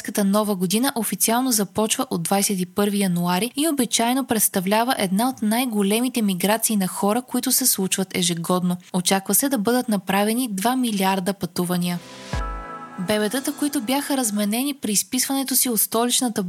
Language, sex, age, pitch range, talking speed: Bulgarian, female, 20-39, 195-250 Hz, 135 wpm